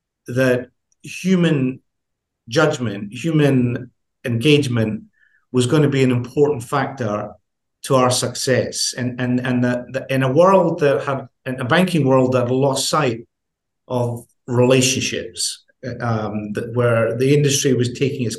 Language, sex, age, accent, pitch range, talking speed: English, male, 50-69, British, 115-140 Hz, 135 wpm